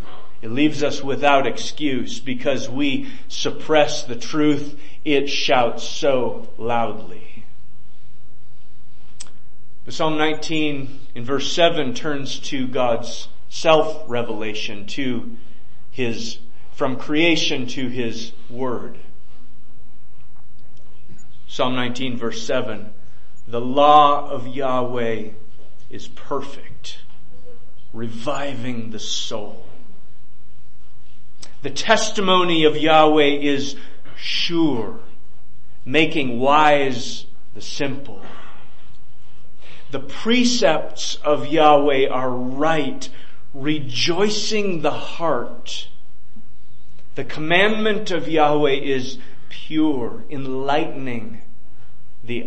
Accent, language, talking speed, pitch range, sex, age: American, English, 80 wpm, 120-150 Hz, male, 30-49